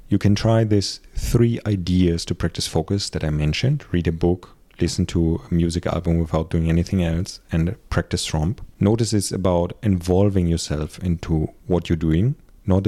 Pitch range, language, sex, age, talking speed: 85-100 Hz, English, male, 30-49, 170 wpm